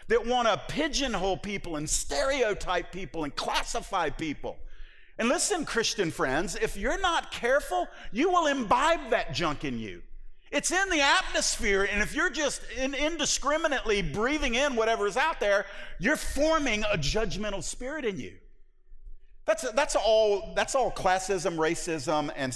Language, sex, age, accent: English, male, 50-69, American